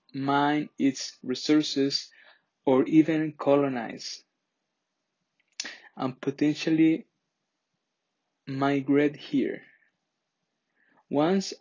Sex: male